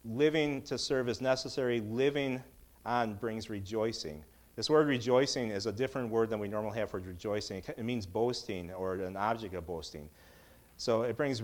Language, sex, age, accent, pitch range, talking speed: English, male, 40-59, American, 95-120 Hz, 175 wpm